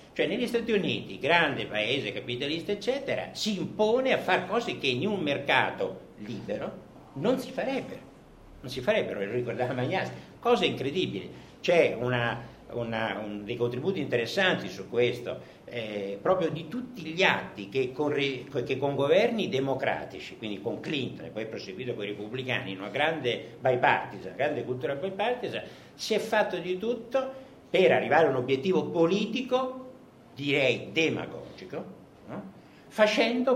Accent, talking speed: native, 145 wpm